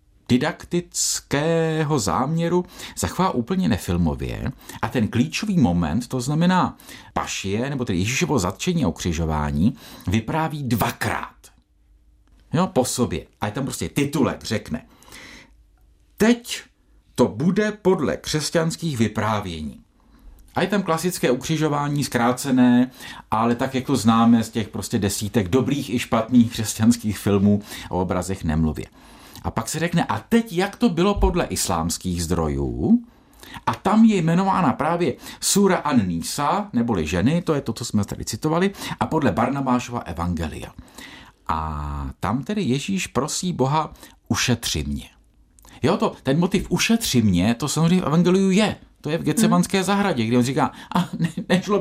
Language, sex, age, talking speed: Czech, male, 50-69, 140 wpm